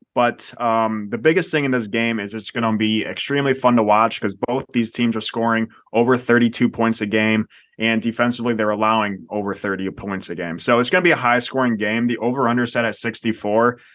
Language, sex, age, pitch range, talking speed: English, male, 20-39, 110-120 Hz, 225 wpm